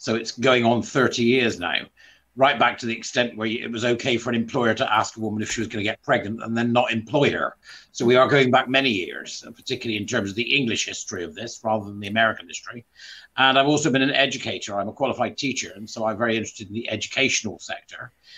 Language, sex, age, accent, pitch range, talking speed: English, male, 50-69, British, 115-135 Hz, 245 wpm